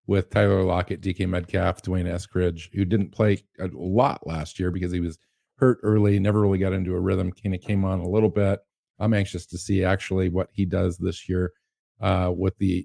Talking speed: 210 wpm